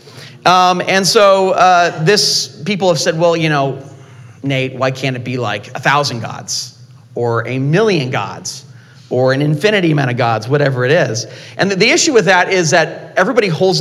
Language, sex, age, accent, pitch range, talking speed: English, male, 40-59, American, 130-175 Hz, 185 wpm